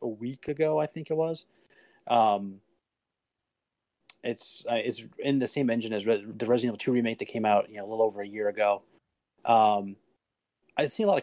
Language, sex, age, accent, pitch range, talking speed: English, male, 30-49, American, 110-140 Hz, 210 wpm